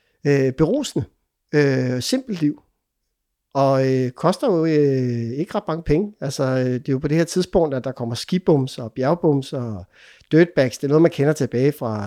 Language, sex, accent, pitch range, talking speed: Danish, male, native, 130-160 Hz, 190 wpm